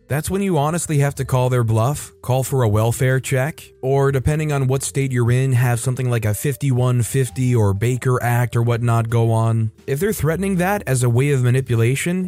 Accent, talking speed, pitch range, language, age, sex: American, 205 wpm, 110-150 Hz, English, 20-39, male